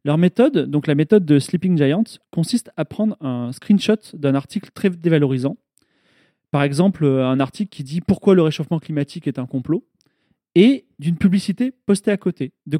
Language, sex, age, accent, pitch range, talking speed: French, male, 30-49, French, 155-210 Hz, 175 wpm